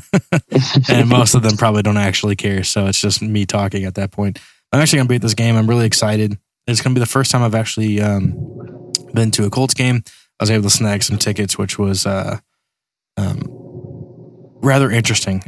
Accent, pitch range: American, 105-120 Hz